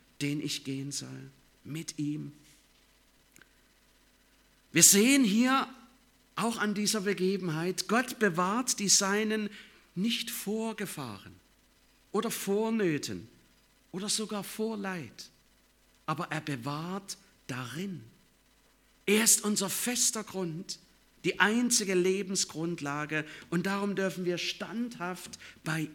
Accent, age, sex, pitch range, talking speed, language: German, 50-69, male, 150-205 Hz, 105 wpm, German